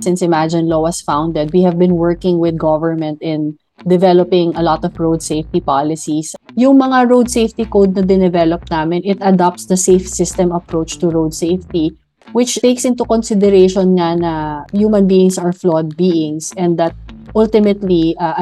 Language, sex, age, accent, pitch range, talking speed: Filipino, female, 20-39, native, 160-195 Hz, 160 wpm